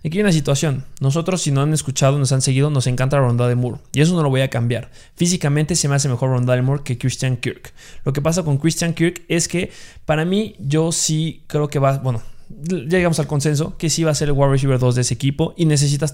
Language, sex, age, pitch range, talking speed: Spanish, male, 20-39, 130-155 Hz, 255 wpm